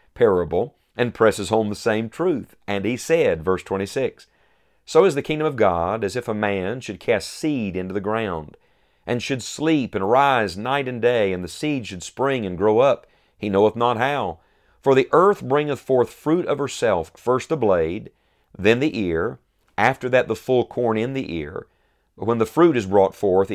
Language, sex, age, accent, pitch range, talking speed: English, male, 40-59, American, 100-130 Hz, 195 wpm